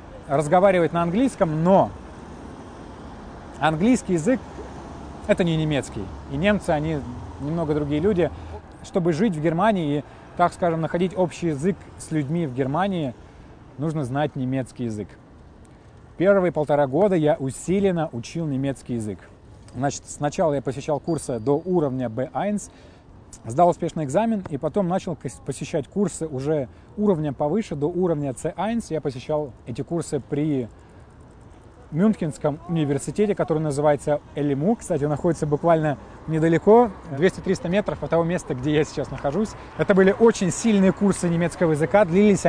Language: Russian